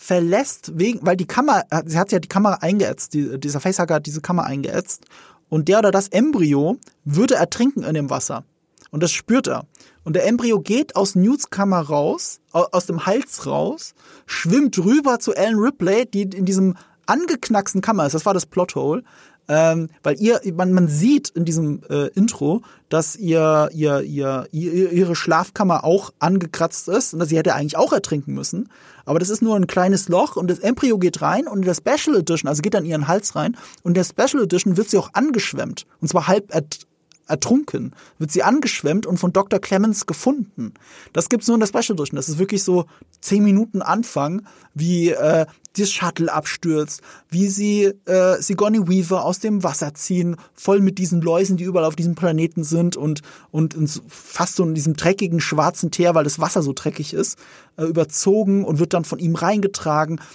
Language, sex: German, male